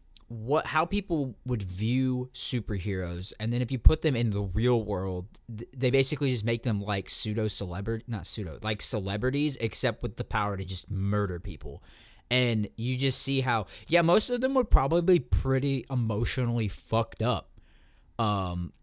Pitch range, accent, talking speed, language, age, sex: 100-130 Hz, American, 170 wpm, English, 20-39, male